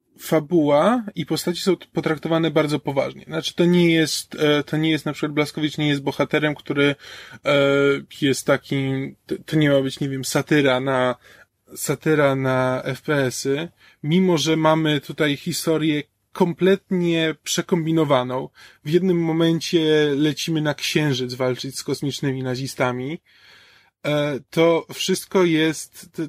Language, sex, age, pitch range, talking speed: Polish, male, 20-39, 135-165 Hz, 125 wpm